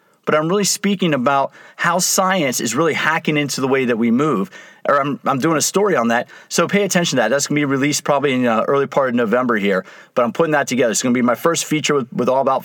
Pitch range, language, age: 135-175 Hz, English, 40-59